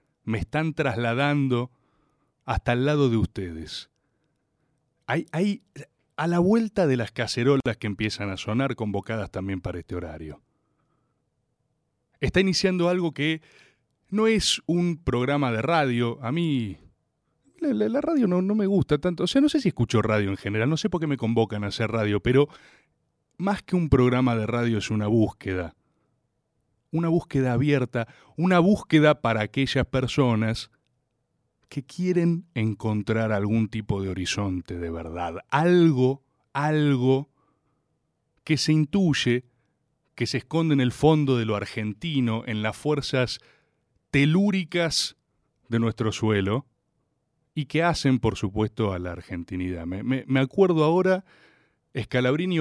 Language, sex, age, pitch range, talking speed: Spanish, male, 30-49, 110-160 Hz, 145 wpm